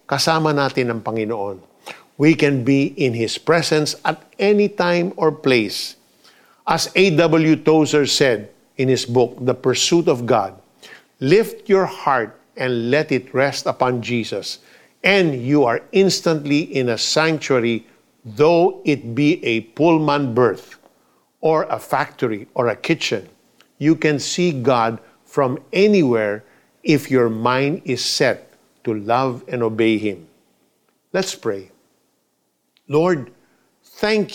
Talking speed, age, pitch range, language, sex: 130 wpm, 50-69, 125-170 Hz, Filipino, male